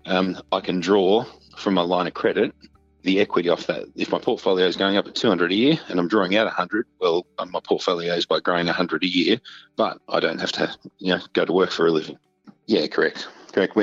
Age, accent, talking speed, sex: 30-49, Australian, 215 wpm, male